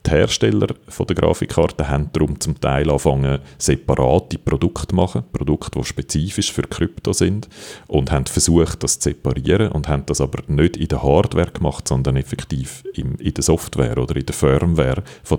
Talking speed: 170 wpm